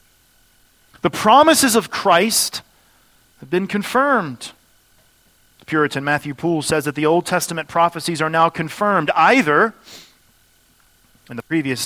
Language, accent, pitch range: English, American, 140-185 Hz